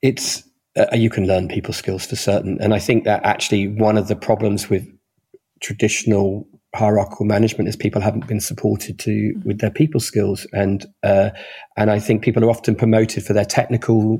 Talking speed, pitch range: 185 wpm, 105-125 Hz